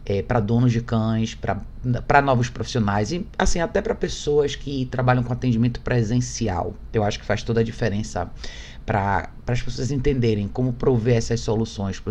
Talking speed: 165 wpm